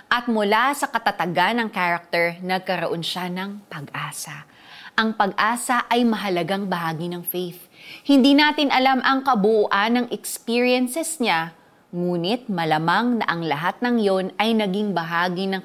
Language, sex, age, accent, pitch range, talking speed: Filipino, female, 20-39, native, 180-240 Hz, 140 wpm